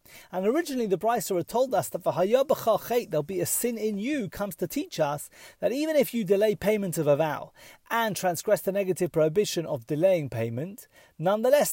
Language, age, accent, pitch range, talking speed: English, 30-49, British, 160-230 Hz, 185 wpm